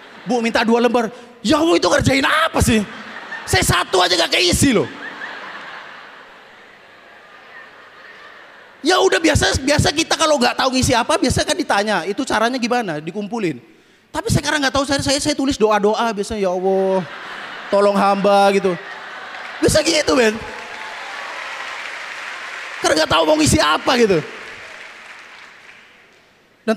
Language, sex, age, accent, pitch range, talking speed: Indonesian, male, 30-49, native, 190-260 Hz, 135 wpm